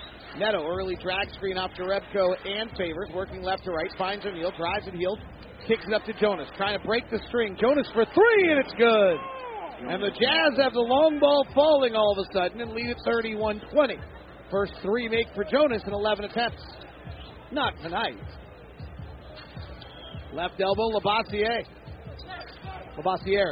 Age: 40-59